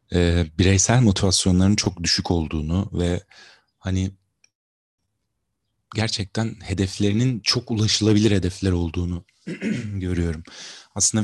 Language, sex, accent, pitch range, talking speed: Turkish, male, native, 90-100 Hz, 80 wpm